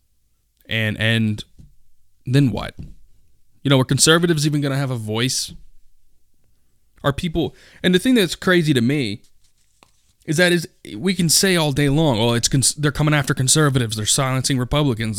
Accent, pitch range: American, 110-150 Hz